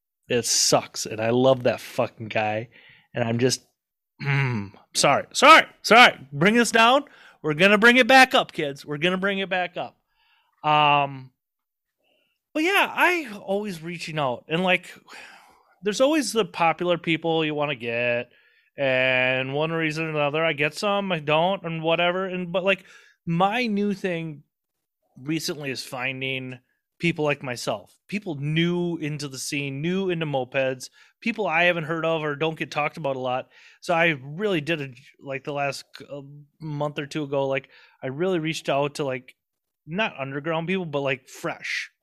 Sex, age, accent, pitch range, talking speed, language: male, 30-49, American, 135-175 Hz, 165 wpm, English